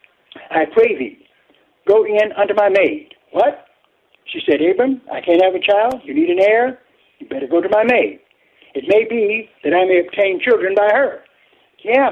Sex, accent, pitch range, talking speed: male, American, 210-320 Hz, 190 wpm